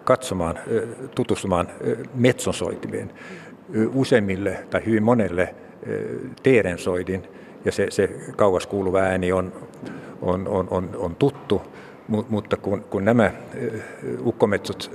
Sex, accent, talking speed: male, native, 95 wpm